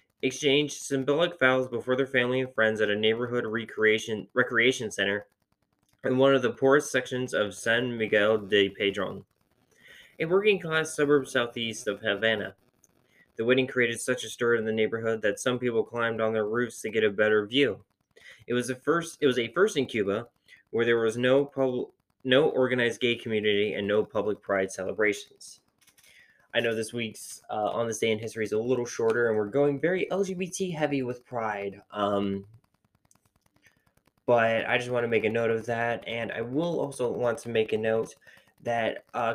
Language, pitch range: English, 110-130 Hz